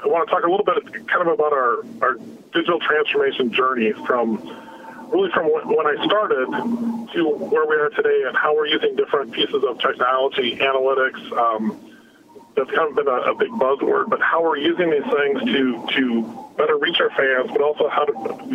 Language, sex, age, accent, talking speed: English, male, 40-59, American, 195 wpm